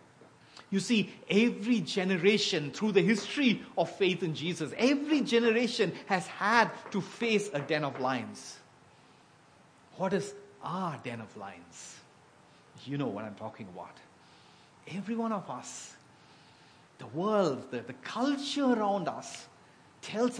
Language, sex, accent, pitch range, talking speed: English, male, Indian, 135-205 Hz, 130 wpm